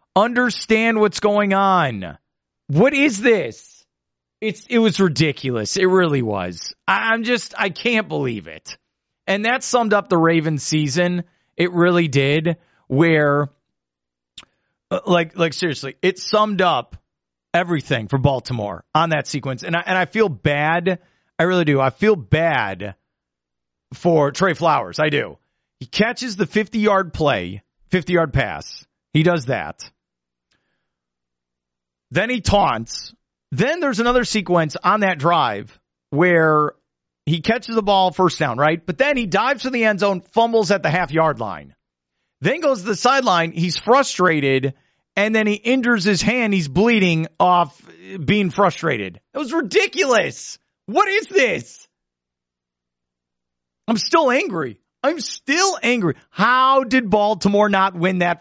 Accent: American